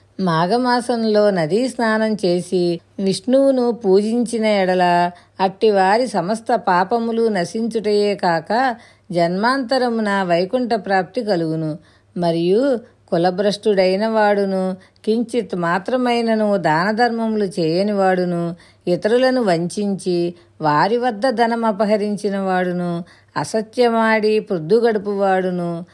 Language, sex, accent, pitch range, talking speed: Telugu, female, native, 175-225 Hz, 75 wpm